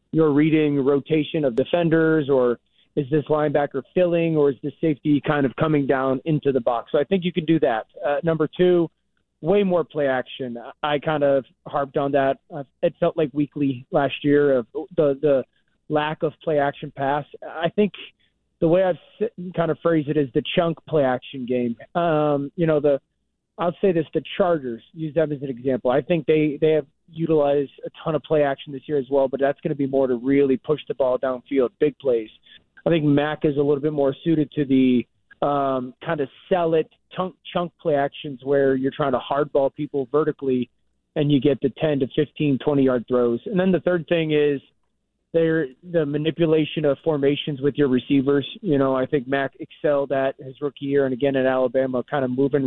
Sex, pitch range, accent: male, 135-160 Hz, American